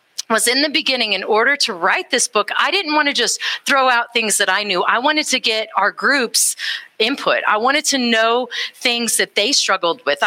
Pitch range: 210-260 Hz